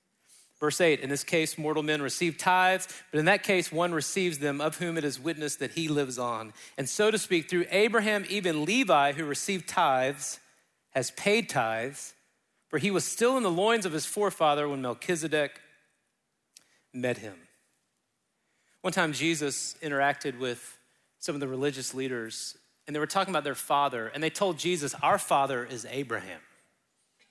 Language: English